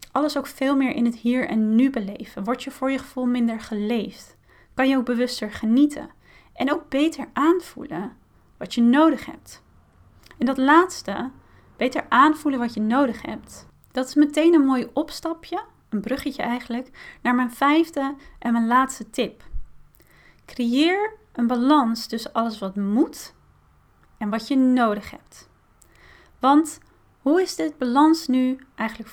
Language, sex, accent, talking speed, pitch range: Dutch, female, Dutch, 150 wpm, 230-300 Hz